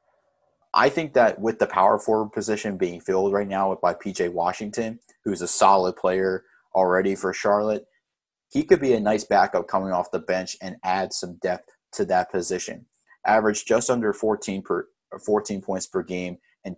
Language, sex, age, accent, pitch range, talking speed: English, male, 30-49, American, 95-105 Hz, 170 wpm